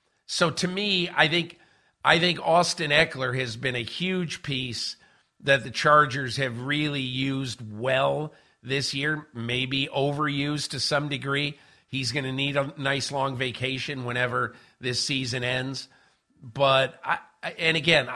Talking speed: 145 wpm